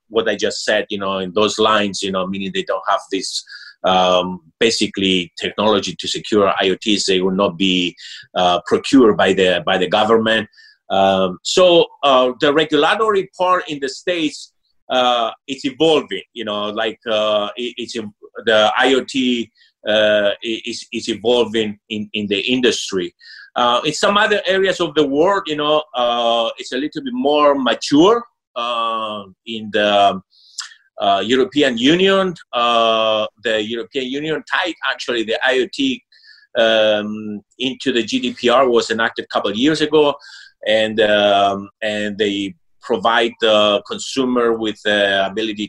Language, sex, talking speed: English, male, 150 wpm